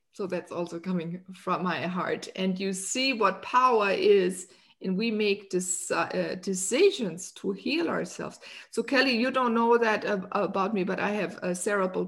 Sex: female